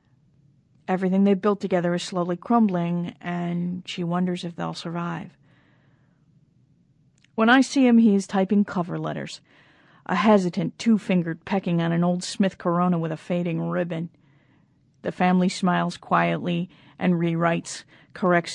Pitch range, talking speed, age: 165-195 Hz, 135 wpm, 40-59